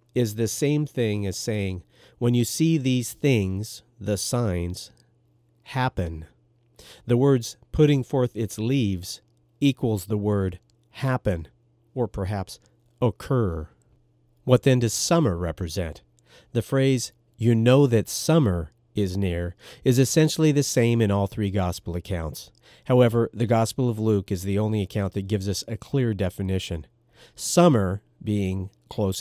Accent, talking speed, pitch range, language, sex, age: American, 140 wpm, 95-120 Hz, English, male, 50-69